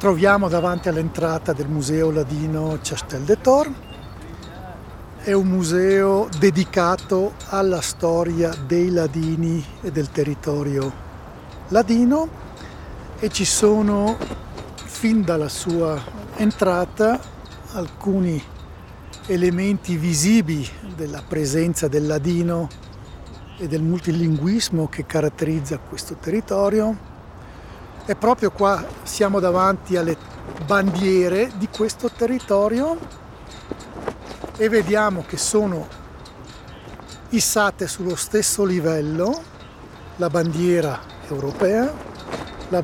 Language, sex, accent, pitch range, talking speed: Italian, male, native, 155-205 Hz, 90 wpm